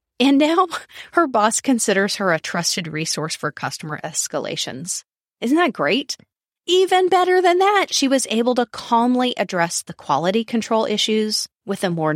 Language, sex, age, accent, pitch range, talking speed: English, female, 30-49, American, 175-280 Hz, 160 wpm